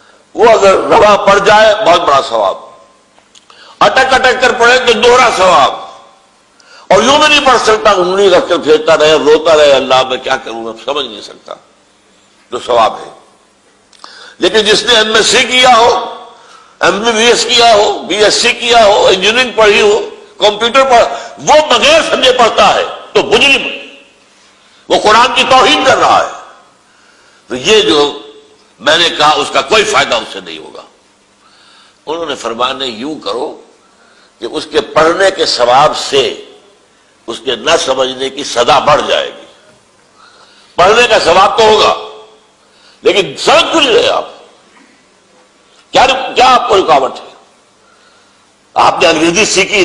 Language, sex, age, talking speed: Urdu, male, 60-79, 150 wpm